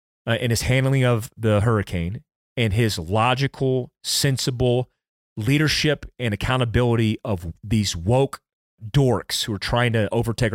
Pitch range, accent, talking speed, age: 110-140 Hz, American, 130 wpm, 30-49